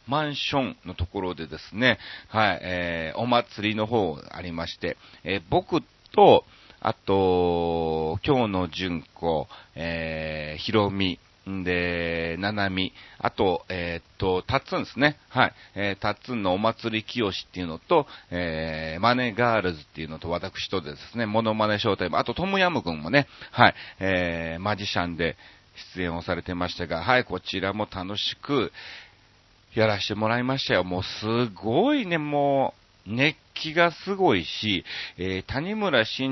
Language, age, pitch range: Japanese, 40-59, 90-125 Hz